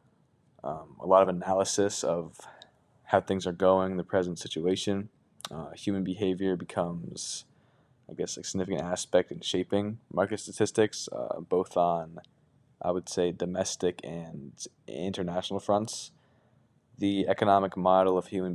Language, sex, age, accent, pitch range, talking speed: English, male, 20-39, American, 90-100 Hz, 130 wpm